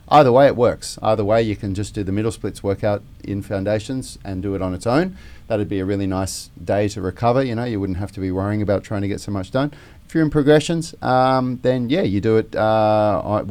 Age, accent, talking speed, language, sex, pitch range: 30-49, Australian, 250 wpm, English, male, 95-120 Hz